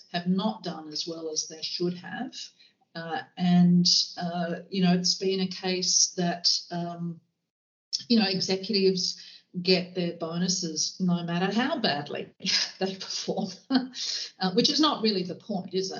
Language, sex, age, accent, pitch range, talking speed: English, female, 50-69, Australian, 165-190 Hz, 150 wpm